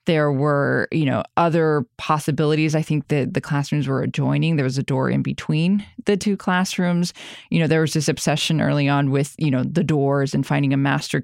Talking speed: 210 wpm